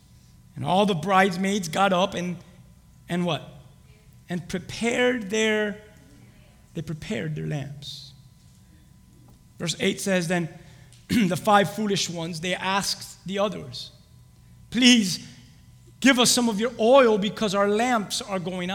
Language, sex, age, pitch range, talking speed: English, male, 30-49, 140-205 Hz, 130 wpm